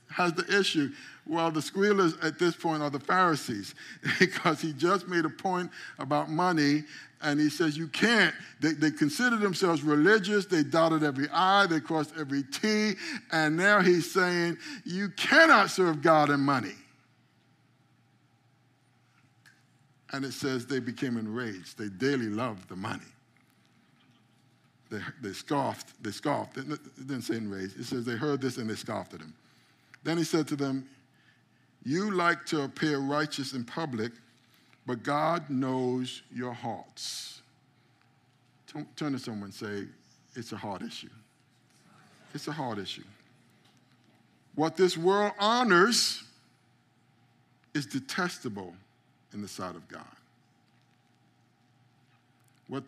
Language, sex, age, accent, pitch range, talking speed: English, male, 60-79, American, 125-165 Hz, 140 wpm